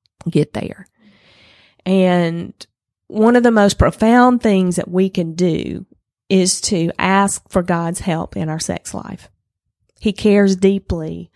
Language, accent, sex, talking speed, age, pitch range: English, American, female, 135 wpm, 30-49, 165-200 Hz